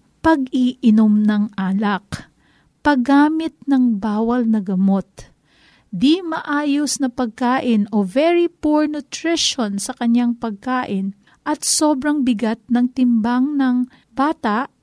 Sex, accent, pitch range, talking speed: female, native, 230-275 Hz, 105 wpm